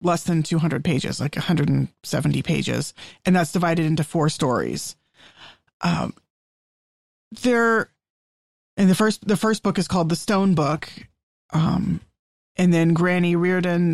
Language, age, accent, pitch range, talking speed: English, 30-49, American, 170-210 Hz, 135 wpm